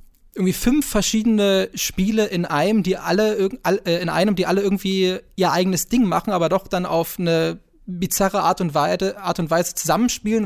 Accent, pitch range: German, 155-185 Hz